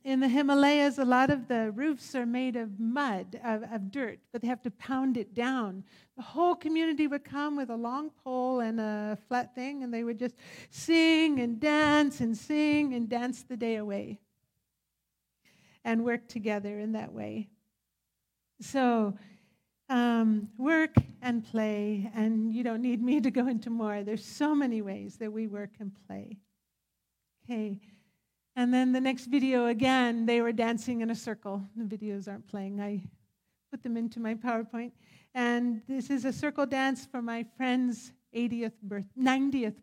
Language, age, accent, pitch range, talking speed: English, 50-69, American, 215-260 Hz, 170 wpm